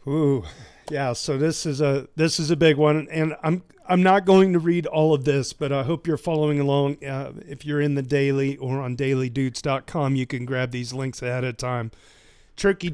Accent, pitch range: American, 125-150 Hz